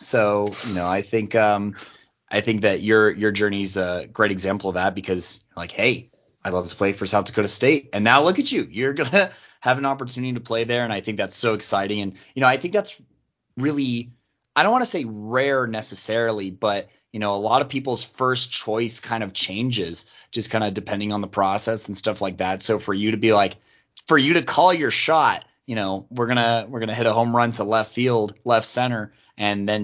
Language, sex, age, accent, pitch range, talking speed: English, male, 20-39, American, 100-125 Hz, 235 wpm